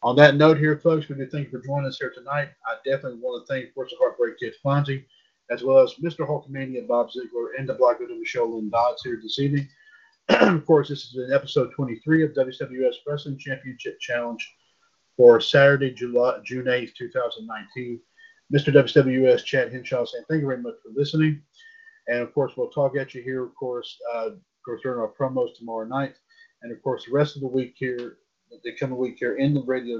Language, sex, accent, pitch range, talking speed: English, male, American, 125-160 Hz, 205 wpm